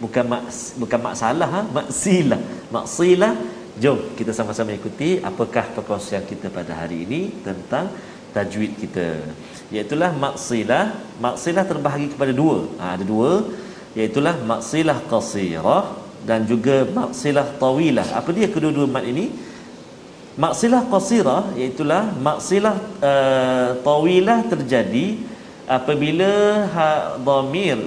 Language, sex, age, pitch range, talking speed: Malayalam, male, 40-59, 125-185 Hz, 115 wpm